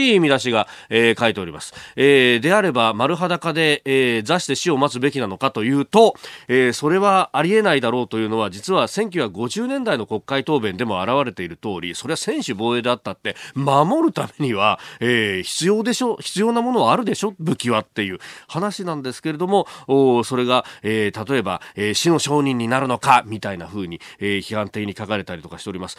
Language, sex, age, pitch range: Japanese, male, 40-59, 110-160 Hz